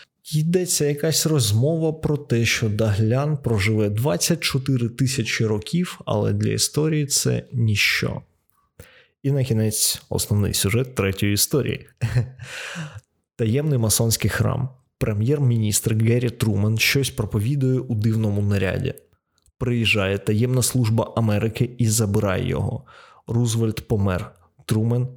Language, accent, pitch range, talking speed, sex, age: Ukrainian, native, 110-130 Hz, 105 wpm, male, 20-39